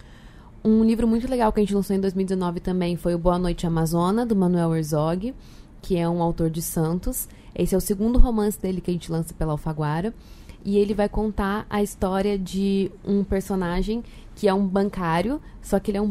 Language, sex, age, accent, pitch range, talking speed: Portuguese, female, 20-39, Brazilian, 175-205 Hz, 205 wpm